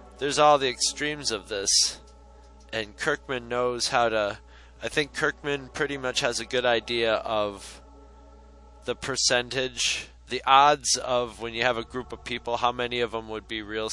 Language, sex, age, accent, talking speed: English, male, 20-39, American, 170 wpm